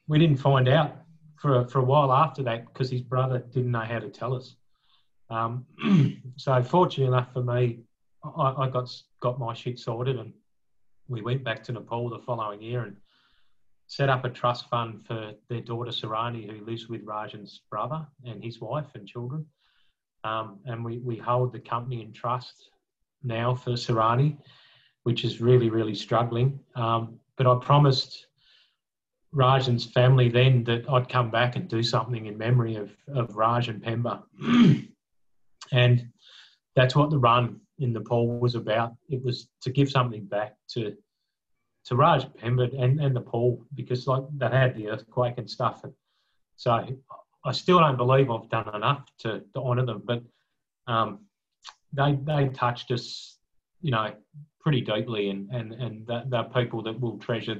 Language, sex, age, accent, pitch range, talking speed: English, male, 30-49, Australian, 115-135 Hz, 170 wpm